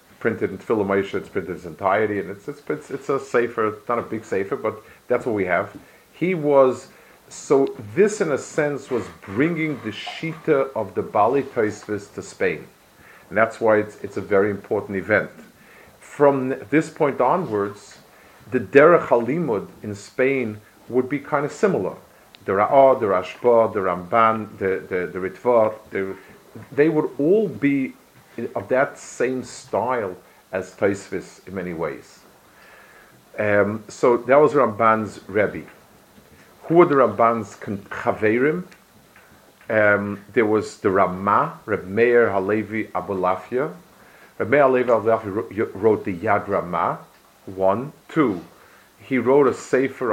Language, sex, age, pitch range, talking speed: English, male, 40-59, 100-130 Hz, 145 wpm